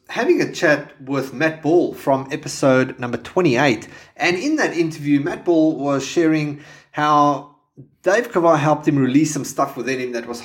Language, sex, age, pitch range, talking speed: English, male, 30-49, 130-160 Hz, 170 wpm